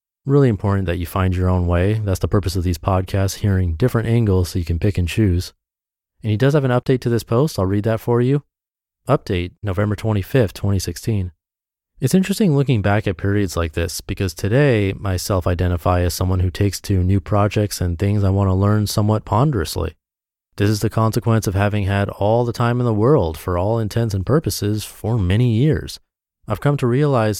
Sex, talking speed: male, 205 wpm